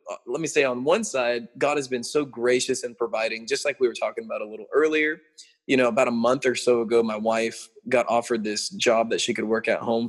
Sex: male